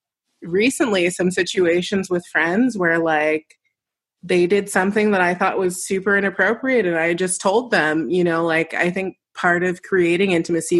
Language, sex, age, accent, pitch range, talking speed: English, female, 30-49, American, 165-195 Hz, 165 wpm